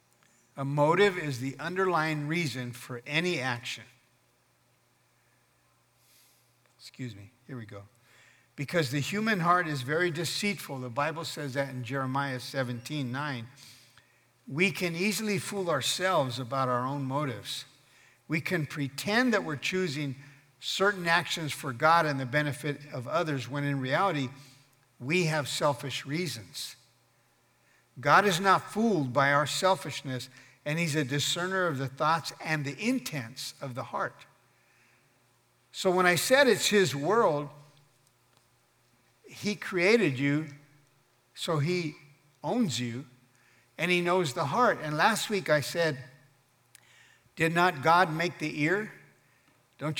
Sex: male